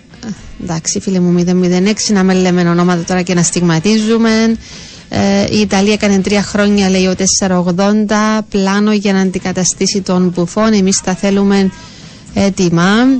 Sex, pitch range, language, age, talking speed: female, 185-220 Hz, Greek, 30-49, 140 wpm